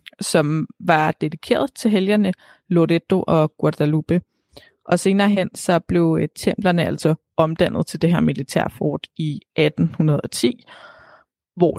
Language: Danish